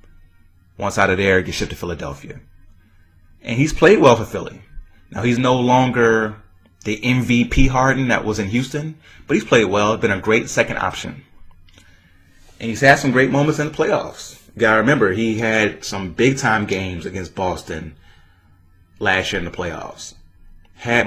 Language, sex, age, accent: English, male, 30-49, American